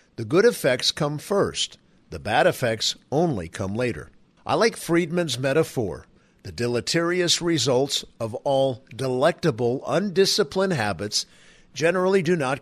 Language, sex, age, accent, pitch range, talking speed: English, male, 50-69, American, 115-160 Hz, 125 wpm